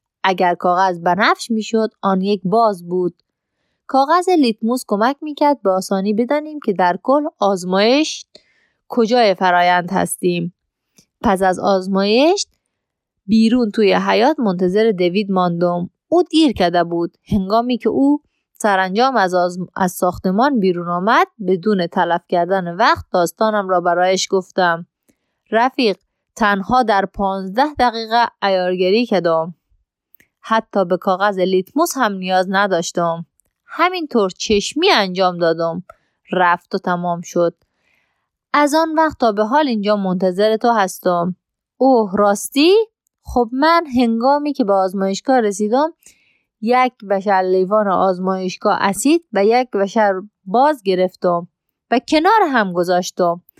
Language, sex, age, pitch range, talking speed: Persian, female, 20-39, 185-245 Hz, 125 wpm